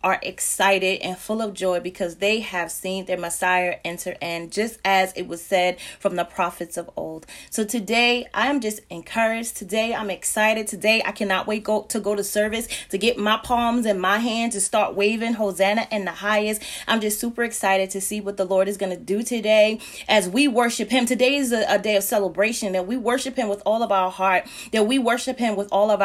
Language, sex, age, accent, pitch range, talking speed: English, female, 30-49, American, 190-230 Hz, 220 wpm